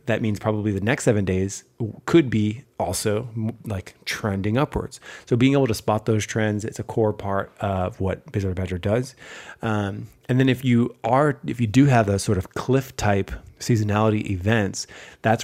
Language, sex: English, male